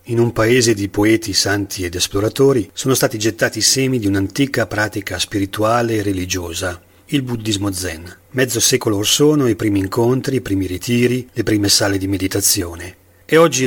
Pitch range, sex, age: 100-120 Hz, male, 40-59